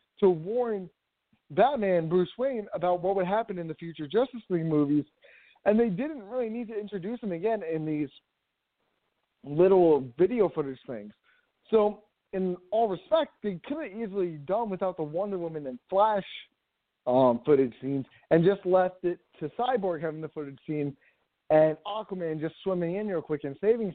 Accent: American